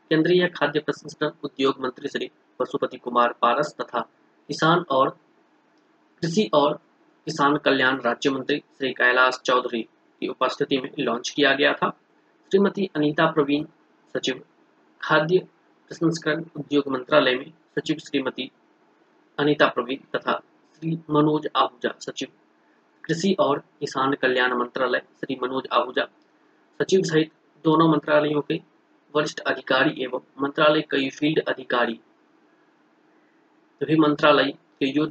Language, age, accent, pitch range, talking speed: Hindi, 20-39, native, 135-165 Hz, 110 wpm